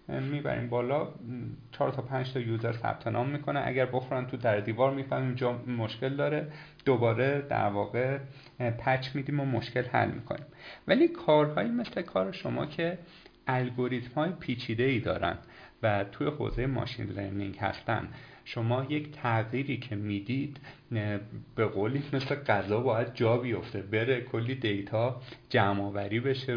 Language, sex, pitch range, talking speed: Persian, male, 115-150 Hz, 140 wpm